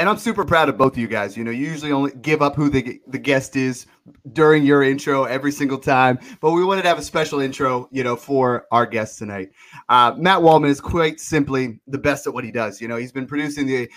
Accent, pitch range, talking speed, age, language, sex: American, 130-150 Hz, 255 wpm, 30-49, English, male